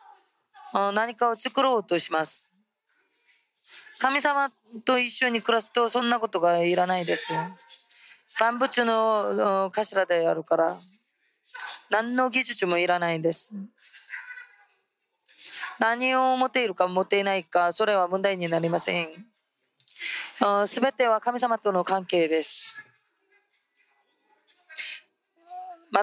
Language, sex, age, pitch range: Japanese, female, 20-39, 200-285 Hz